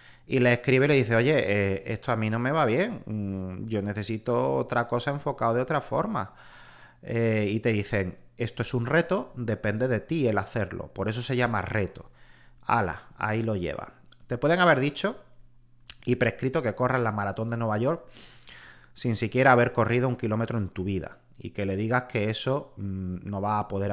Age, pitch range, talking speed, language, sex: 30-49, 100-125 Hz, 195 wpm, Spanish, male